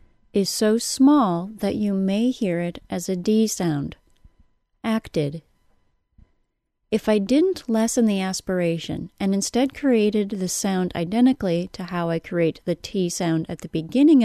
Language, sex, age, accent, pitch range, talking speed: English, female, 30-49, American, 170-225 Hz, 145 wpm